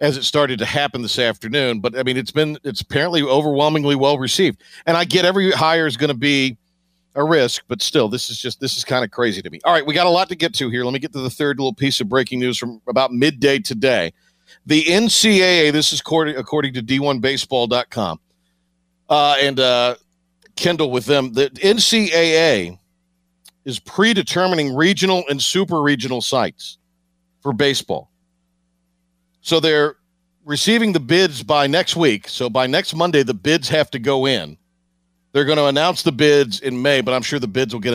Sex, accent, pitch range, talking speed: male, American, 120-165 Hz, 195 wpm